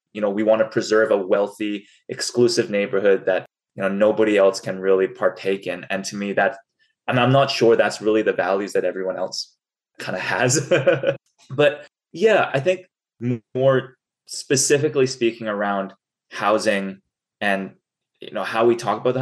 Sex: male